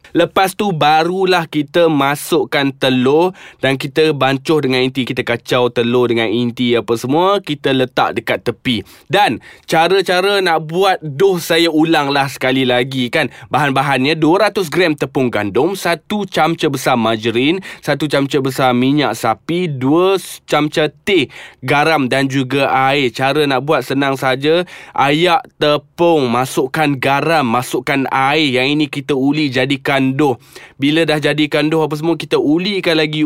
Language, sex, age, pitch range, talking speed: Malay, male, 20-39, 125-160 Hz, 145 wpm